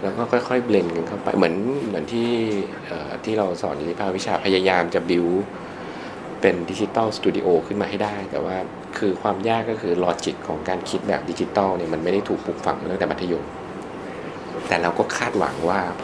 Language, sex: Thai, male